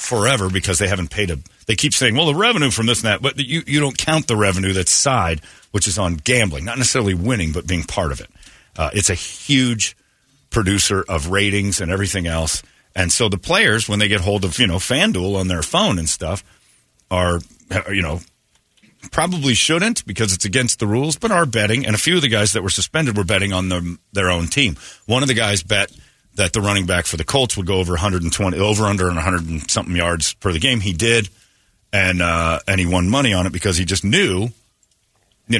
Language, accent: English, American